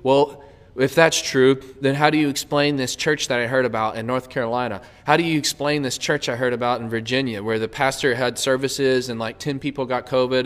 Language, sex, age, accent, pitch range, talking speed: English, male, 20-39, American, 130-175 Hz, 230 wpm